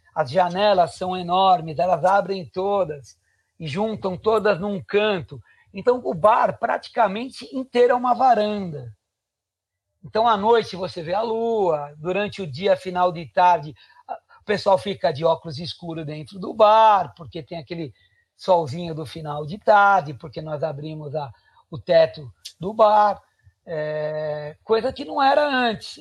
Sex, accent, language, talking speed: male, Brazilian, Portuguese, 145 wpm